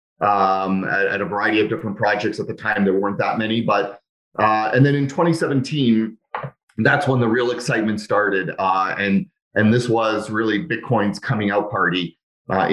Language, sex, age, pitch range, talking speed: English, male, 30-49, 100-120 Hz, 180 wpm